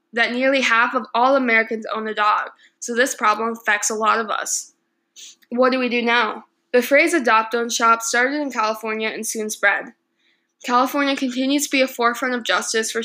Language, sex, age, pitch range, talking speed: English, female, 10-29, 220-255 Hz, 195 wpm